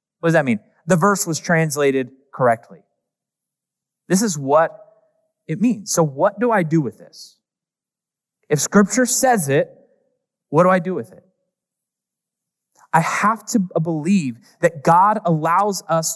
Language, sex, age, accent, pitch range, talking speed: English, male, 30-49, American, 165-220 Hz, 145 wpm